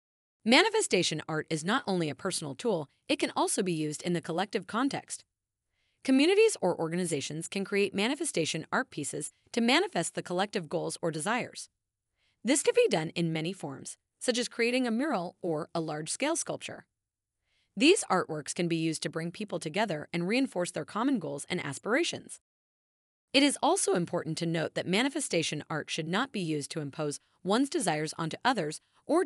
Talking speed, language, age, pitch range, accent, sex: 170 wpm, English, 30-49, 155-240 Hz, American, female